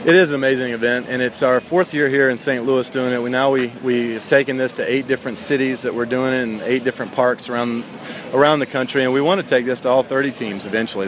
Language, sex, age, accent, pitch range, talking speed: English, male, 40-59, American, 120-140 Hz, 270 wpm